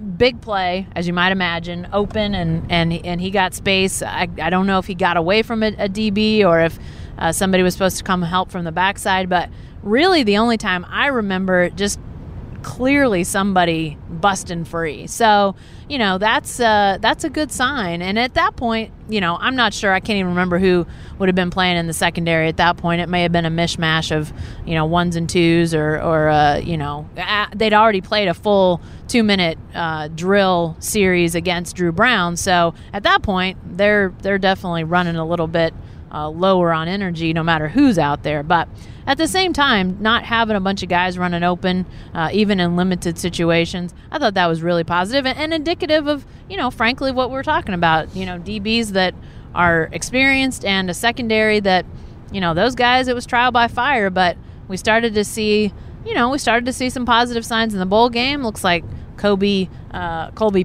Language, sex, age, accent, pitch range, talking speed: English, female, 30-49, American, 170-220 Hz, 205 wpm